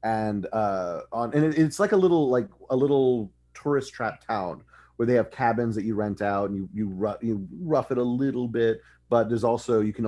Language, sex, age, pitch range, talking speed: English, male, 30-49, 100-135 Hz, 215 wpm